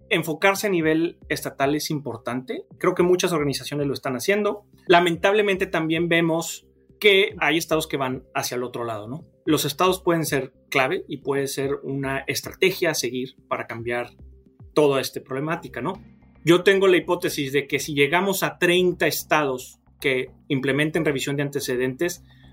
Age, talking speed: 30-49, 160 wpm